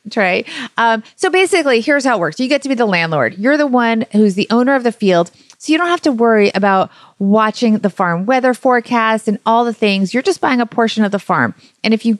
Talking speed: 240 wpm